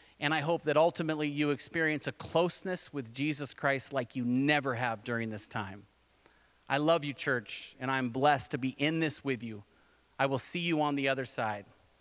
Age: 30-49